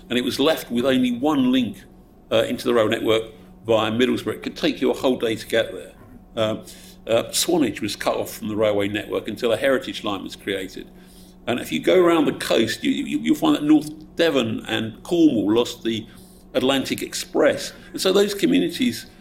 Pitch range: 115-190 Hz